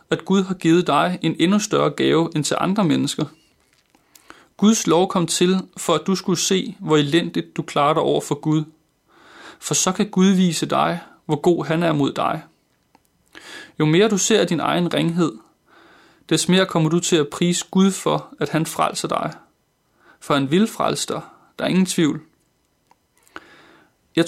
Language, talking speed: Danish, 175 wpm